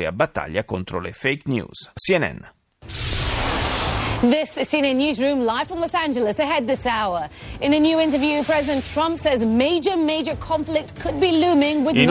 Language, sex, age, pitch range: Italian, male, 30-49, 115-165 Hz